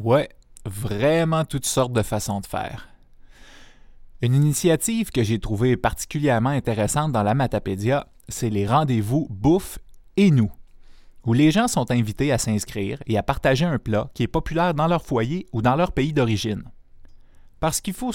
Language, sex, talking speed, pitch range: French, male, 165 wpm, 110-150 Hz